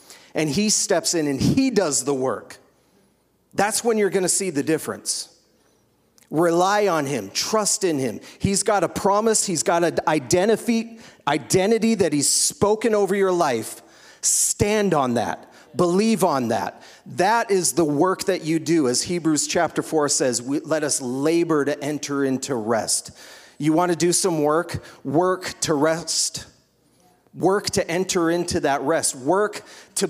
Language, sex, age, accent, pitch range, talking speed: English, male, 40-59, American, 130-185 Hz, 160 wpm